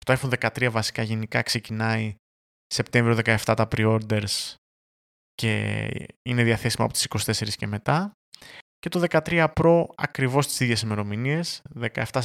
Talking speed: 130 wpm